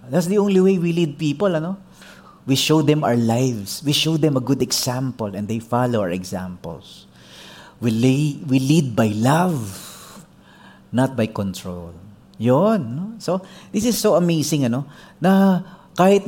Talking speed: 160 wpm